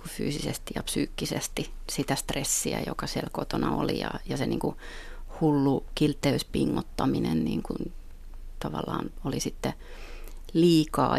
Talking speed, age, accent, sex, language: 120 wpm, 30-49, native, female, Finnish